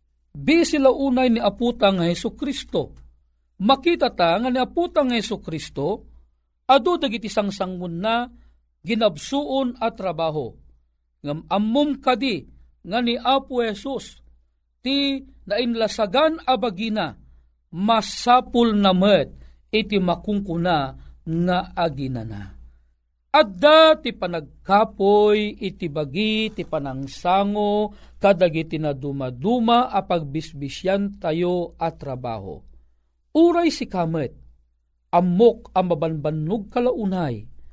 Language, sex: Filipino, male